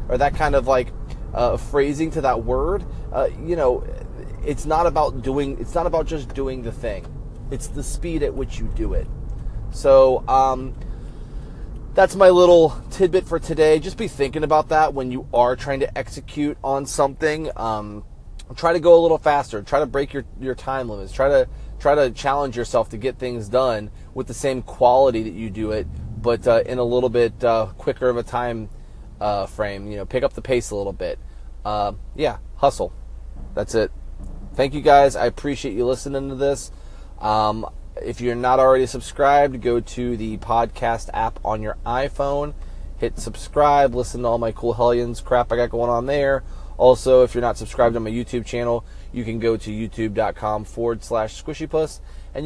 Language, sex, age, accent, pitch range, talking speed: English, male, 30-49, American, 110-140 Hz, 190 wpm